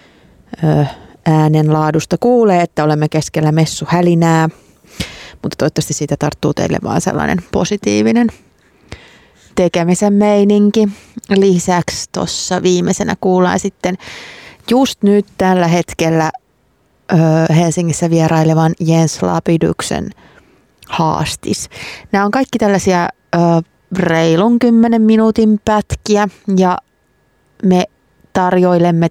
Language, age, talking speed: Finnish, 30-49, 85 wpm